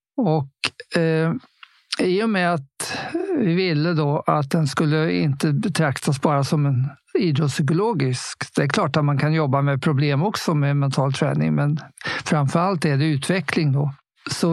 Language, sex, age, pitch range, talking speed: Swedish, male, 50-69, 145-170 Hz, 155 wpm